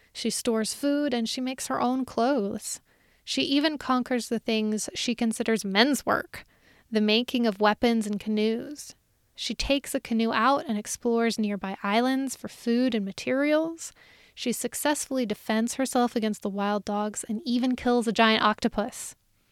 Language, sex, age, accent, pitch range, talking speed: English, female, 20-39, American, 215-255 Hz, 155 wpm